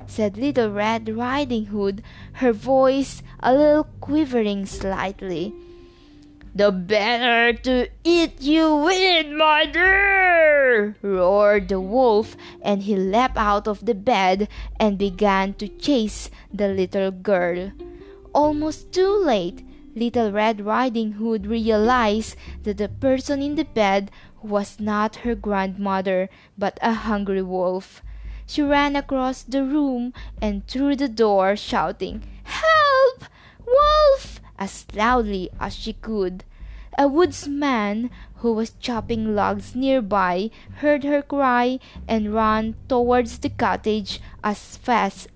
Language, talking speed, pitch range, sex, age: English, 120 wpm, 200-270 Hz, female, 20-39